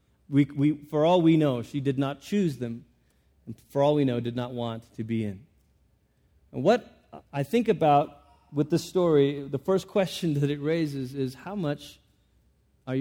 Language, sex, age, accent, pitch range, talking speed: English, male, 40-59, American, 135-175 Hz, 185 wpm